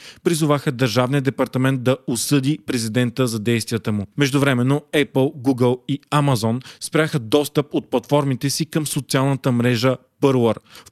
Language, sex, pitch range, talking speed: Bulgarian, male, 125-145 Hz, 135 wpm